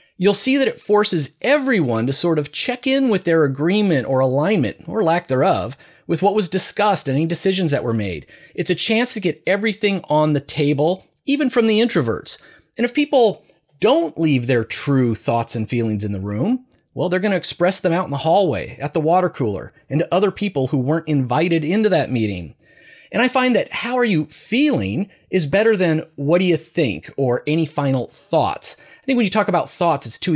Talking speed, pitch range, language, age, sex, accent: 210 wpm, 130-190 Hz, English, 30-49, male, American